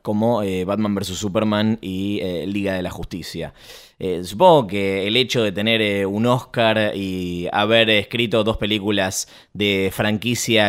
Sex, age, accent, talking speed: male, 20-39, Argentinian, 155 wpm